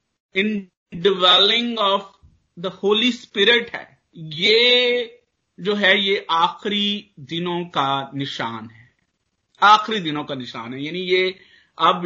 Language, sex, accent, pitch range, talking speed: Hindi, male, native, 145-200 Hz, 115 wpm